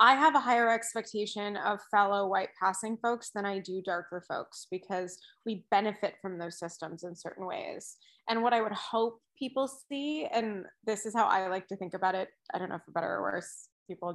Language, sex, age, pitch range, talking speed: English, female, 20-39, 195-230 Hz, 210 wpm